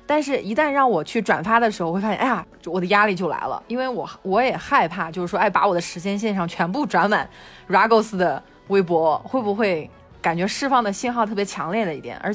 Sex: female